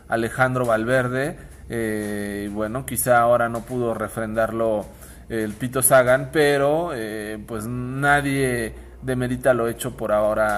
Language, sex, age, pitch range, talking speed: Spanish, male, 20-39, 110-130 Hz, 125 wpm